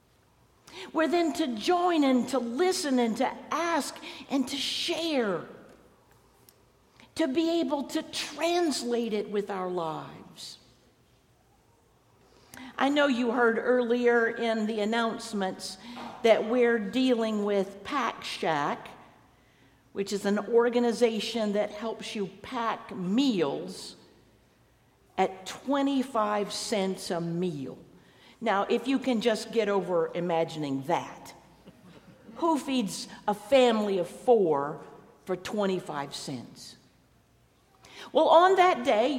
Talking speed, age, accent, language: 110 wpm, 50-69, American, English